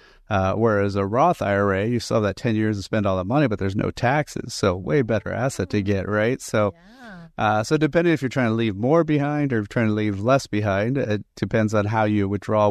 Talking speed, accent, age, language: 230 wpm, American, 30-49, English